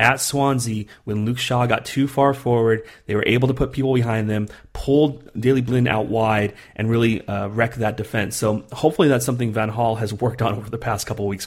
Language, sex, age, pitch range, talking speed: English, male, 30-49, 110-125 Hz, 225 wpm